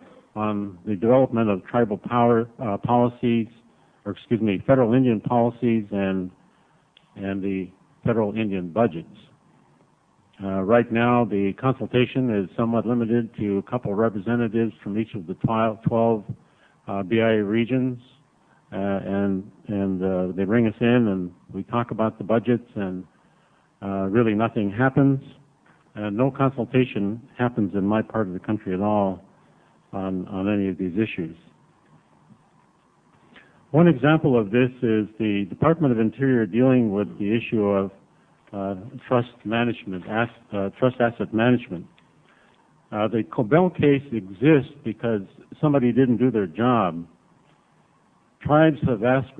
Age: 70-89